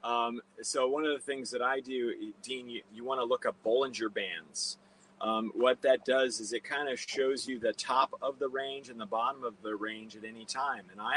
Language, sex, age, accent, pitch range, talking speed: English, male, 40-59, American, 120-200 Hz, 235 wpm